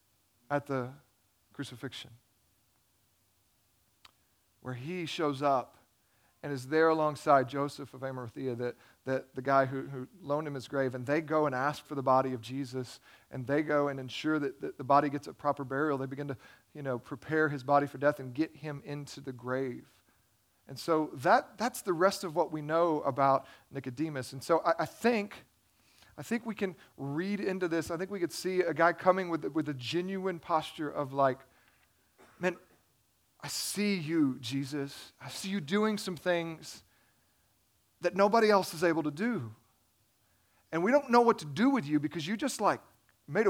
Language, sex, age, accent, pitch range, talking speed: English, male, 40-59, American, 130-180 Hz, 185 wpm